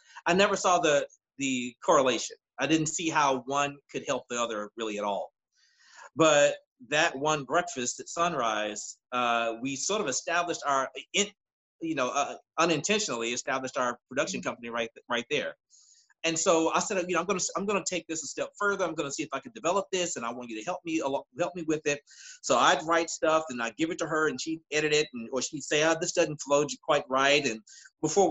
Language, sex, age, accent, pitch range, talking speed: English, male, 30-49, American, 130-175 Hz, 215 wpm